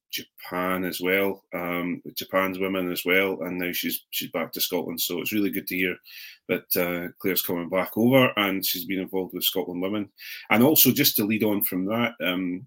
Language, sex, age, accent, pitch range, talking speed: English, male, 30-49, British, 90-95 Hz, 205 wpm